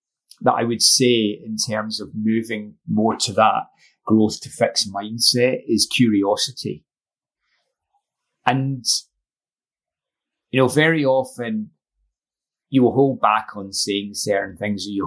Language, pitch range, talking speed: English, 100-125 Hz, 125 wpm